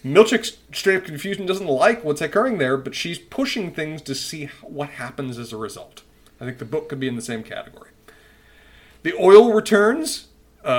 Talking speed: 185 wpm